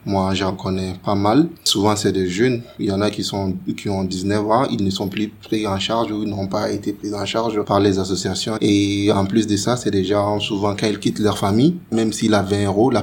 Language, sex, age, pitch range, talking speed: French, male, 30-49, 100-110 Hz, 260 wpm